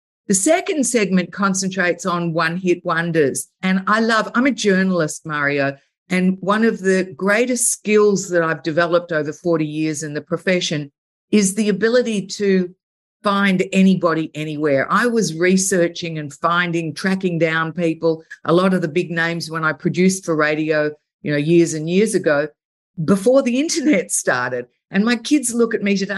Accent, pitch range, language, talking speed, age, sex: Australian, 165-215 Hz, English, 165 wpm, 50-69, female